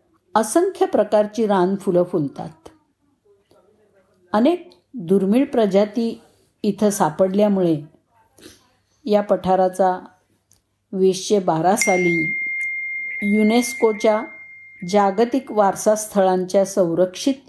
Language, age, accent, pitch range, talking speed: Marathi, 50-69, native, 165-225 Hz, 60 wpm